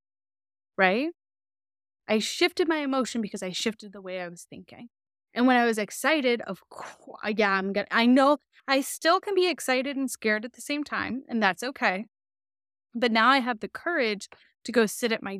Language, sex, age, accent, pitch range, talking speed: English, female, 10-29, American, 200-260 Hz, 195 wpm